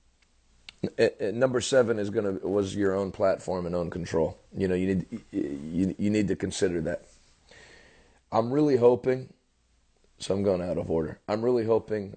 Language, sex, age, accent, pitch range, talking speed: English, male, 30-49, American, 90-115 Hz, 165 wpm